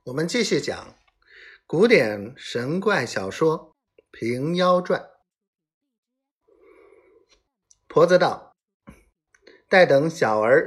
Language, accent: Chinese, native